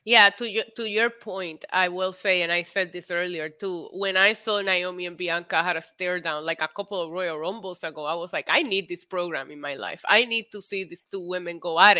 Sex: female